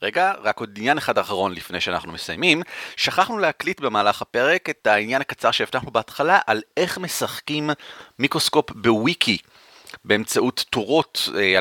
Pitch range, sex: 115-155 Hz, male